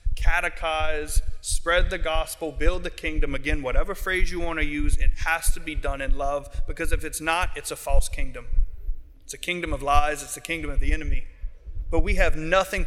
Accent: American